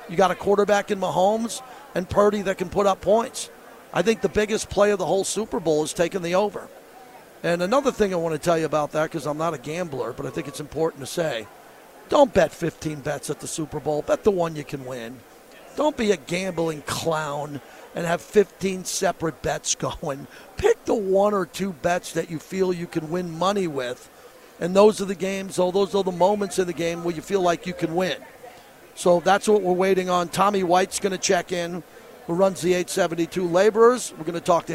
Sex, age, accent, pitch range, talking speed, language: male, 50-69, American, 165-200 Hz, 225 wpm, English